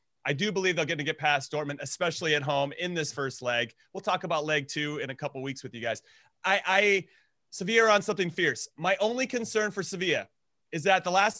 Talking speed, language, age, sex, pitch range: 230 wpm, English, 30-49, male, 140-185 Hz